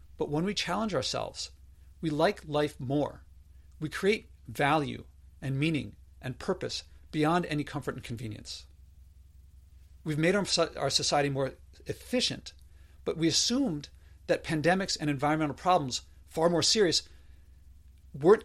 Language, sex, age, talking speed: English, male, 40-59, 125 wpm